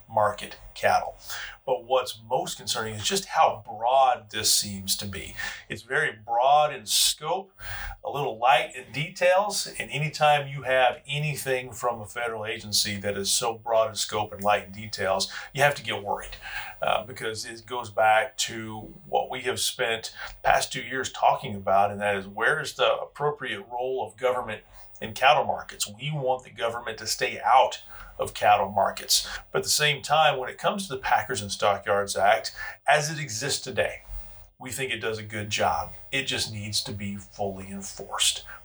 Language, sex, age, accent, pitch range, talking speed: English, male, 40-59, American, 105-135 Hz, 185 wpm